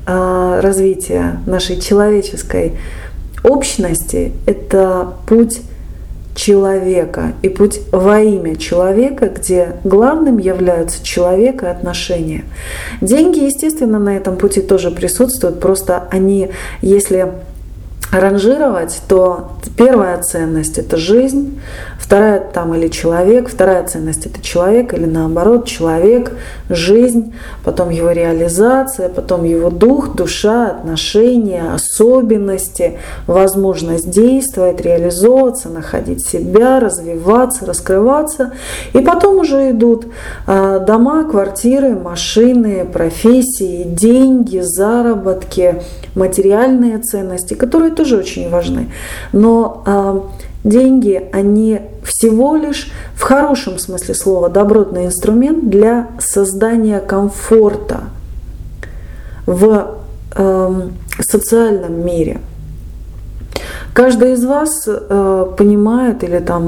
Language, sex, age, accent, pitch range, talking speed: Russian, female, 30-49, native, 180-230 Hz, 95 wpm